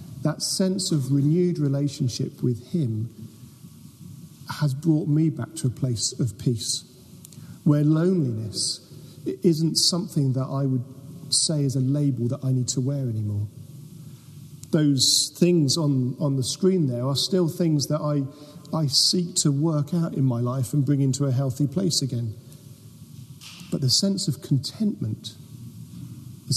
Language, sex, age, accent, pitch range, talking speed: English, male, 40-59, British, 130-160 Hz, 150 wpm